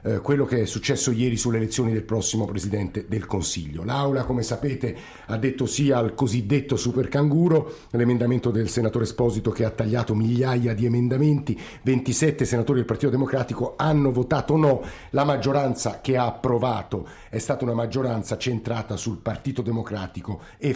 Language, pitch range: Italian, 110-135 Hz